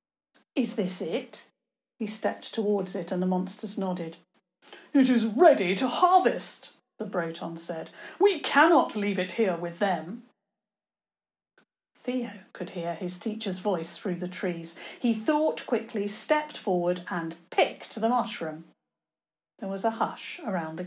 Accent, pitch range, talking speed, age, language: British, 175-235 Hz, 145 wpm, 50-69, English